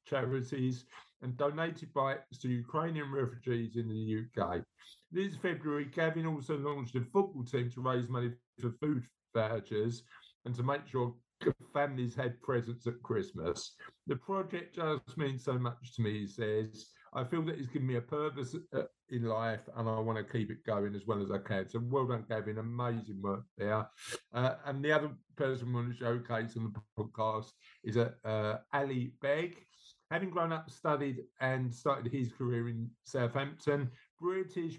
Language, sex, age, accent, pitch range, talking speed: English, male, 50-69, British, 115-145 Hz, 175 wpm